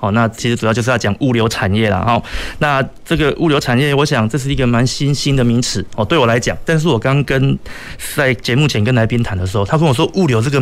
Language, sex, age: Chinese, male, 30-49